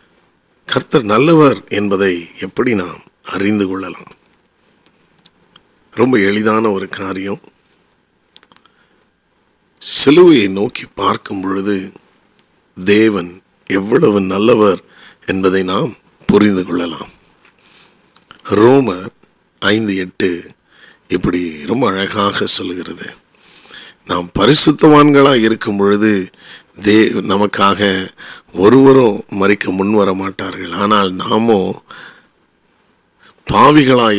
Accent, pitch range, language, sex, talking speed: native, 95-110 Hz, Tamil, male, 70 wpm